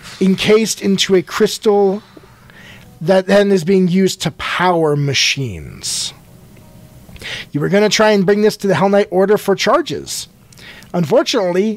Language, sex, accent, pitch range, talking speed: English, male, American, 165-210 Hz, 145 wpm